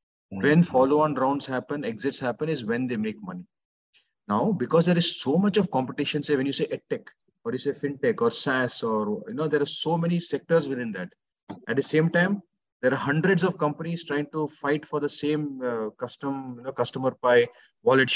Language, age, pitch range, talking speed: English, 30-49, 130-165 Hz, 210 wpm